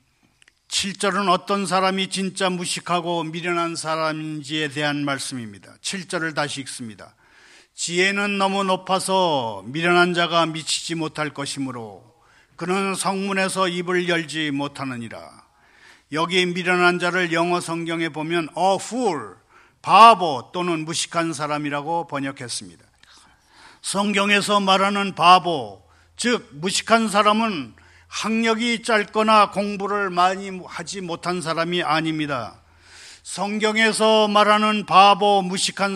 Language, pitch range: Korean, 165-210 Hz